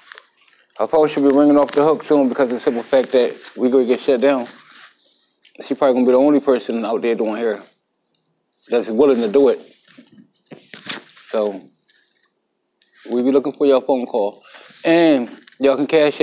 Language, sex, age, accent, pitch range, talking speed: English, male, 20-39, American, 130-145 Hz, 185 wpm